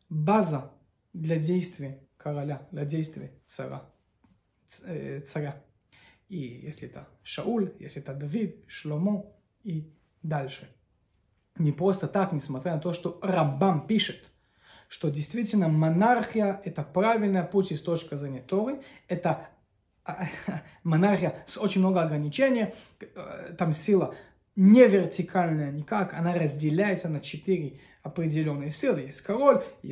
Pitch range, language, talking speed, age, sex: 150-195 Hz, Russian, 120 wpm, 30-49, male